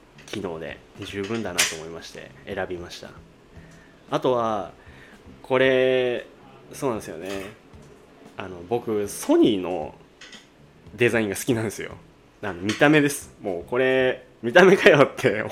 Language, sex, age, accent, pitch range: Japanese, male, 20-39, native, 90-130 Hz